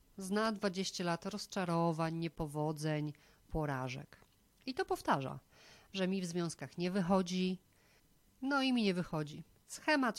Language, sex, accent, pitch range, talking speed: Polish, female, native, 155-195 Hz, 125 wpm